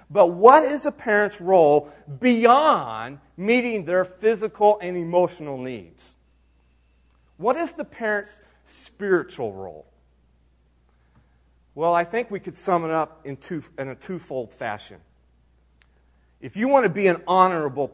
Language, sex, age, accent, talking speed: English, male, 40-59, American, 135 wpm